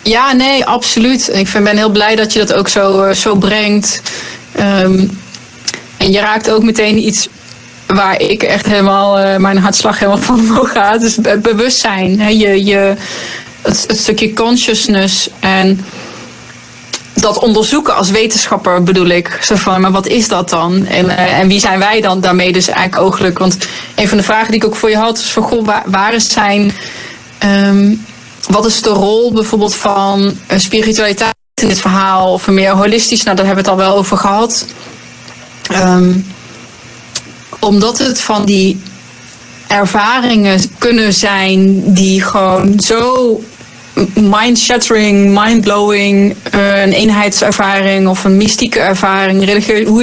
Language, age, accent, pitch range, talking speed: Dutch, 20-39, Dutch, 195-220 Hz, 155 wpm